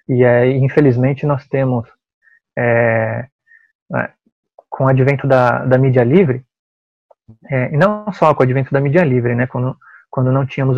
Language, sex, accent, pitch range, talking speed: Portuguese, male, Brazilian, 125-145 Hz, 155 wpm